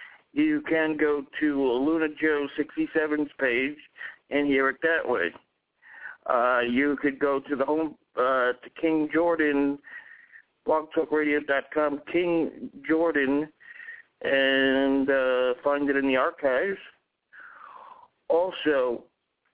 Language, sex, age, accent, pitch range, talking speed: English, male, 60-79, American, 135-165 Hz, 115 wpm